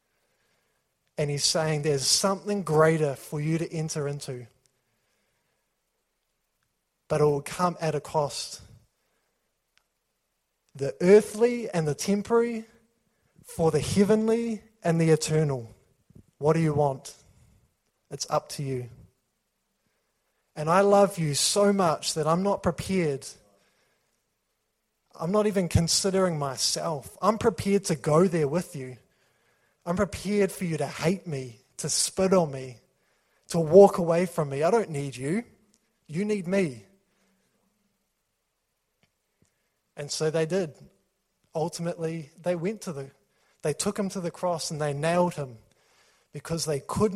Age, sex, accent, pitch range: 20-39, male, Australian, 140-190 Hz